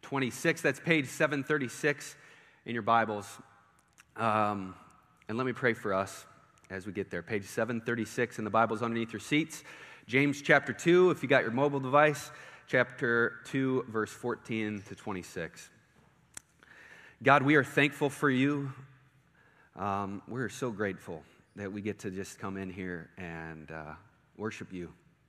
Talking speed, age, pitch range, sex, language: 150 wpm, 30-49, 95-120 Hz, male, English